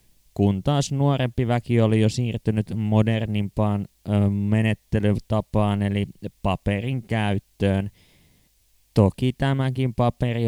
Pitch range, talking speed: 100-125 Hz, 85 wpm